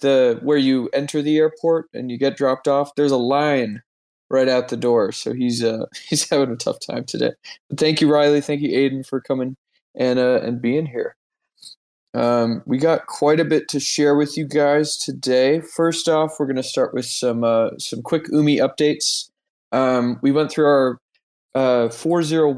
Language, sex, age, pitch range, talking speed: English, male, 20-39, 120-145 Hz, 195 wpm